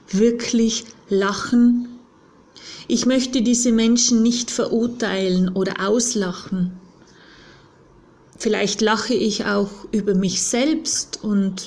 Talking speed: 95 wpm